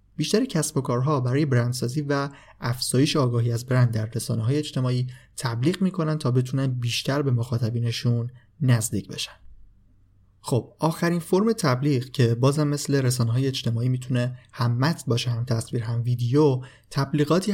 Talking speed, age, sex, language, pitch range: 145 wpm, 30-49, male, Persian, 120-145 Hz